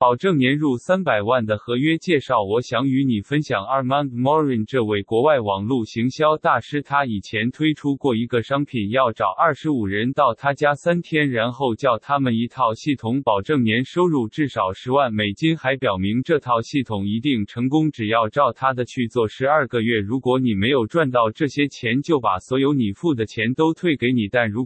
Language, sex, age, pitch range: Chinese, male, 20-39, 115-145 Hz